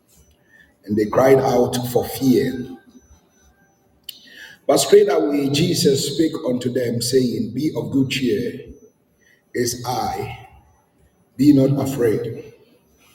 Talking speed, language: 105 wpm, English